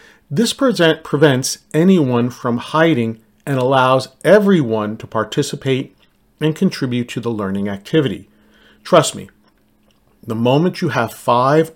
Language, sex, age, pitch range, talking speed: English, male, 40-59, 115-150 Hz, 120 wpm